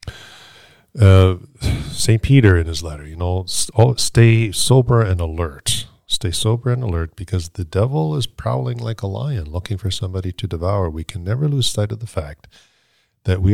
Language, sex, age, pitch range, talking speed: English, male, 40-59, 90-115 Hz, 175 wpm